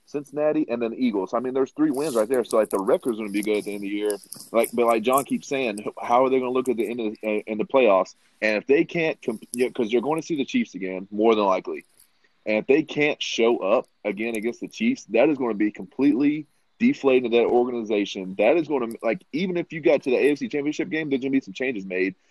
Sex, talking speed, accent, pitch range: male, 280 wpm, American, 105-145 Hz